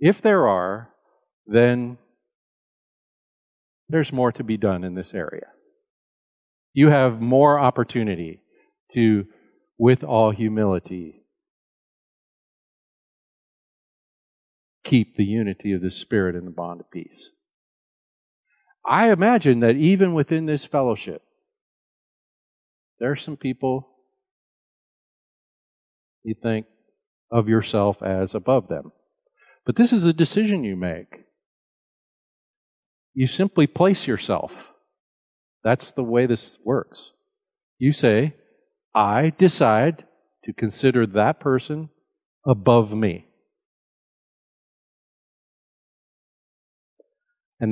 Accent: American